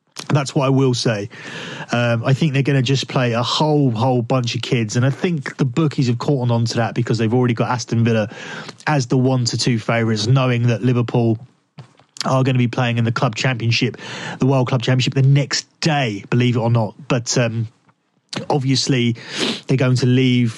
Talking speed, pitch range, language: 205 wpm, 120-140 Hz, English